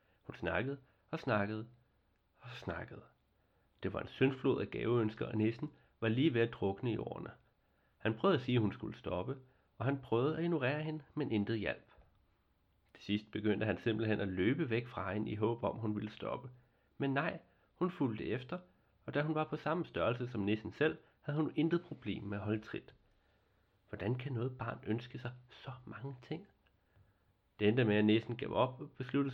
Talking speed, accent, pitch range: 190 wpm, native, 105-135 Hz